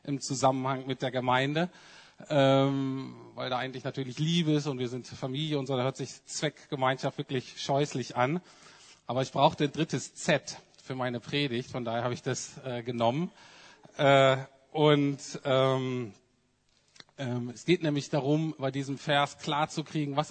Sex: male